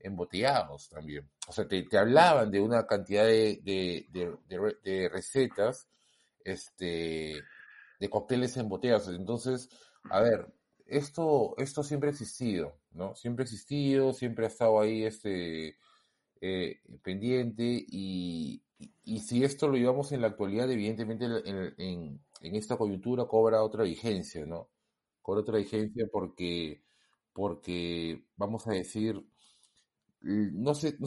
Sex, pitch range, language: male, 95-125 Hz, Spanish